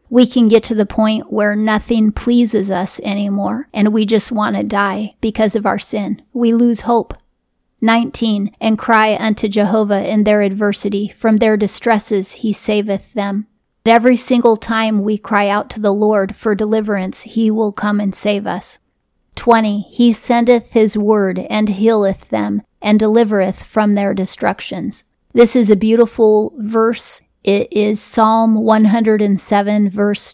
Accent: American